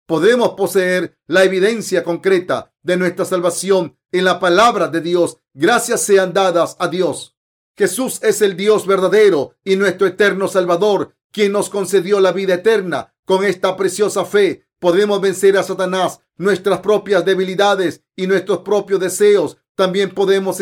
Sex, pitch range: male, 185-205 Hz